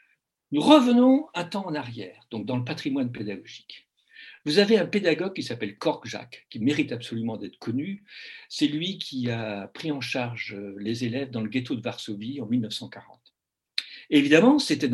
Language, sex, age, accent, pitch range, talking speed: French, male, 60-79, French, 120-195 Hz, 170 wpm